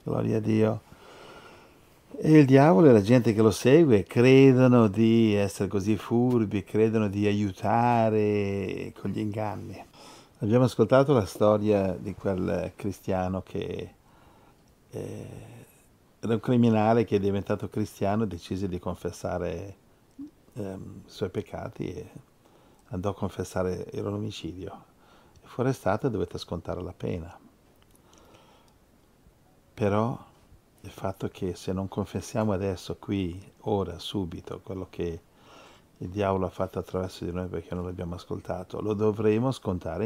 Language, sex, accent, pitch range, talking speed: Italian, male, native, 95-115 Hz, 135 wpm